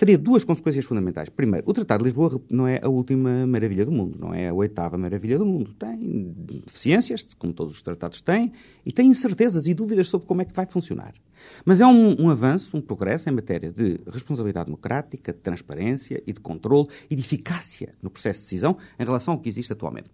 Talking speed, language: 210 wpm, Portuguese